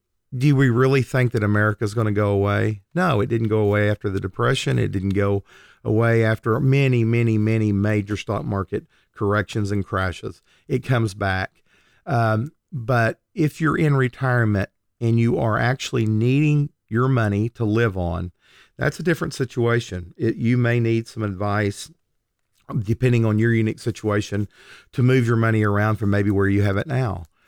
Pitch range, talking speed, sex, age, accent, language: 100-125 Hz, 170 wpm, male, 40-59, American, English